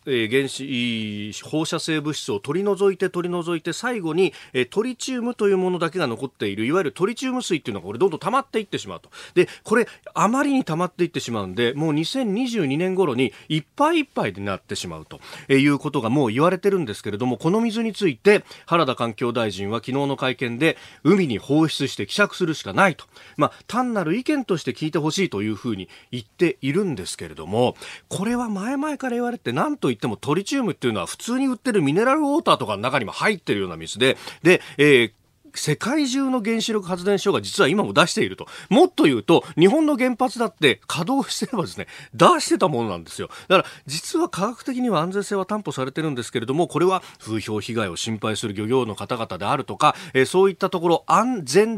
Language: Japanese